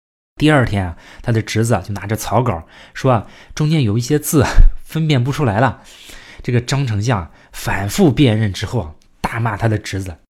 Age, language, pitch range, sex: 20-39, Chinese, 100-145 Hz, male